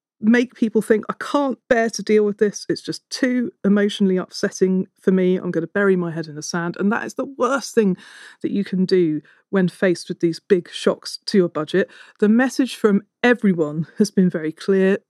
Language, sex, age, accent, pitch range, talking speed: English, female, 40-59, British, 175-230 Hz, 210 wpm